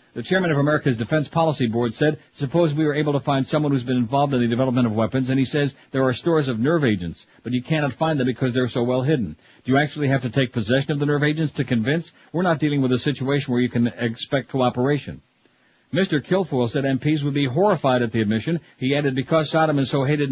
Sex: male